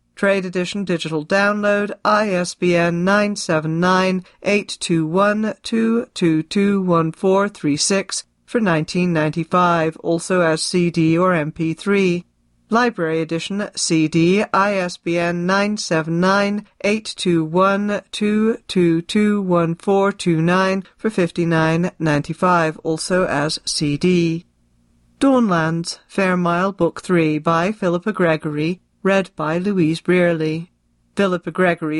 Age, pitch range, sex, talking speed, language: 40-59, 165-195 Hz, female, 125 wpm, English